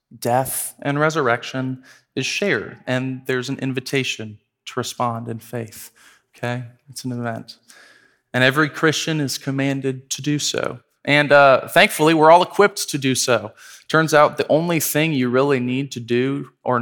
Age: 20-39